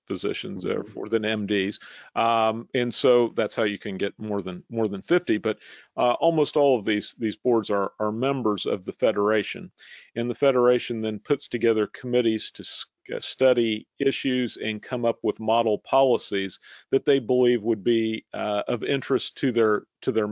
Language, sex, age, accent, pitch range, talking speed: English, male, 40-59, American, 105-125 Hz, 175 wpm